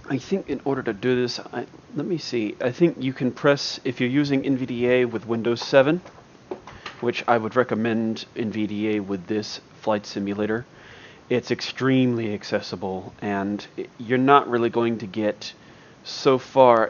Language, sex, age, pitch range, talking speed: English, male, 30-49, 110-130 Hz, 155 wpm